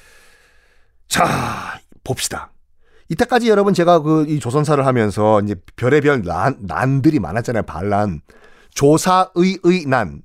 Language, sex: Korean, male